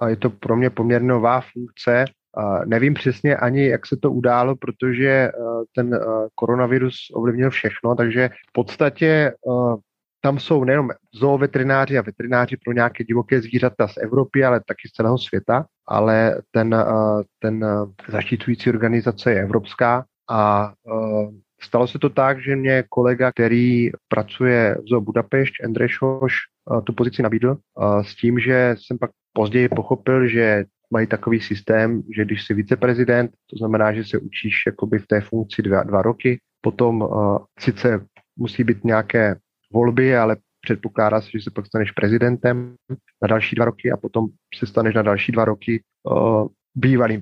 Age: 30-49